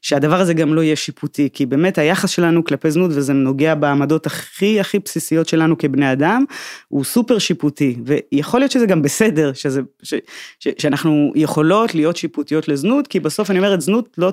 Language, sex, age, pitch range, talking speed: Hebrew, female, 20-39, 145-185 Hz, 185 wpm